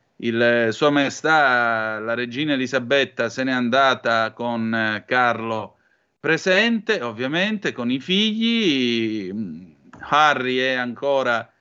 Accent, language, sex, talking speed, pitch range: native, Italian, male, 100 wpm, 125-155 Hz